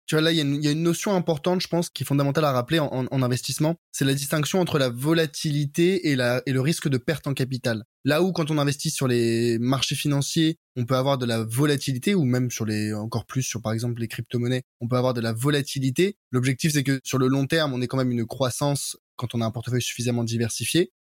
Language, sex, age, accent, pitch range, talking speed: French, male, 20-39, French, 125-150 Hz, 250 wpm